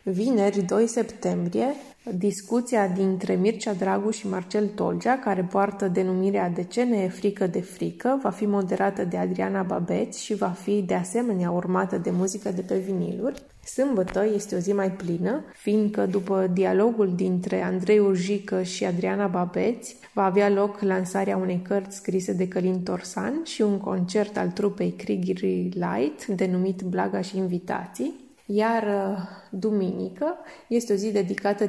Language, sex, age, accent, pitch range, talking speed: English, female, 20-39, Romanian, 190-225 Hz, 150 wpm